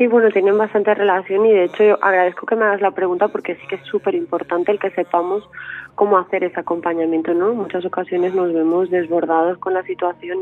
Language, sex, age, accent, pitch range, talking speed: Spanish, female, 20-39, Spanish, 170-200 Hz, 215 wpm